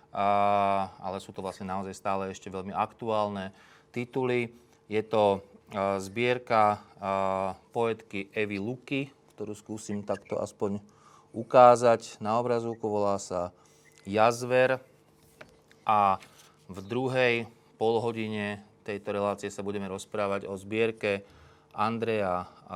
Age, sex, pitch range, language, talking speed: 30-49, male, 100-120 Hz, Slovak, 100 wpm